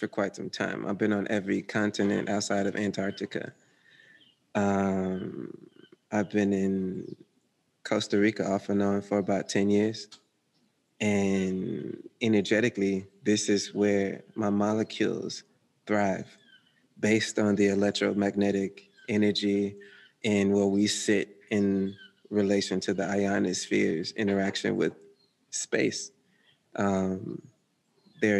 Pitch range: 100-115 Hz